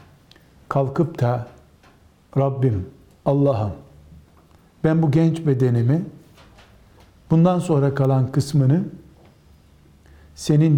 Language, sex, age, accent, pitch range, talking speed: Turkish, male, 60-79, native, 105-155 Hz, 70 wpm